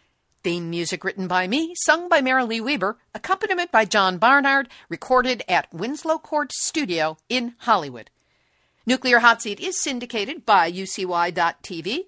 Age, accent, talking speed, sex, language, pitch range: 50-69, American, 135 wpm, female, English, 180-255 Hz